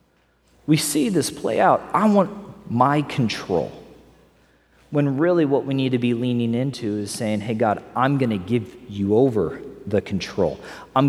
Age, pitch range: 40-59, 105-145 Hz